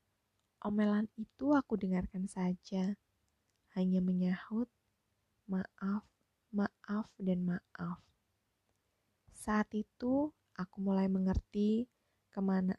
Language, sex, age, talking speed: Indonesian, female, 20-39, 80 wpm